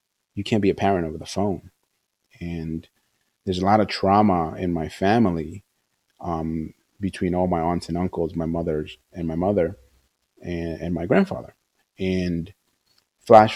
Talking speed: 155 wpm